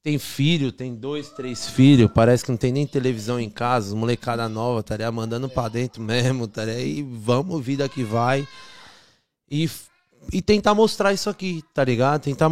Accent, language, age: Brazilian, Portuguese, 20-39